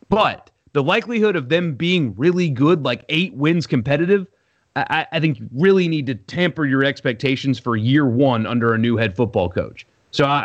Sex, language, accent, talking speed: male, English, American, 185 wpm